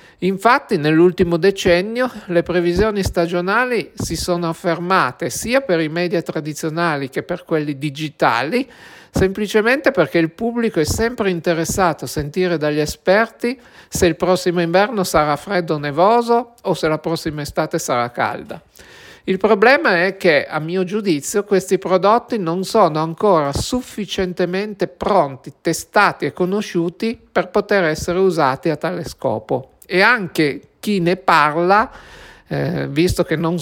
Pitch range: 155-195 Hz